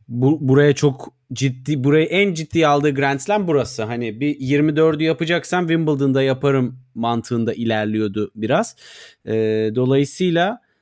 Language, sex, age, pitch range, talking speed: Turkish, male, 30-49, 125-165 Hz, 115 wpm